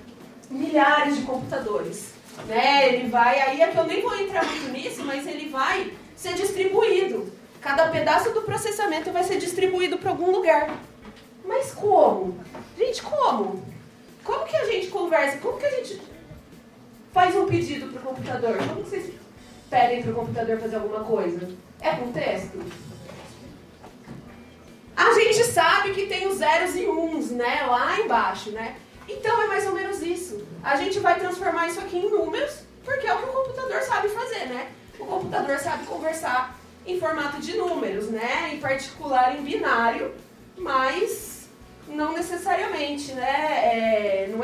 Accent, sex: Brazilian, female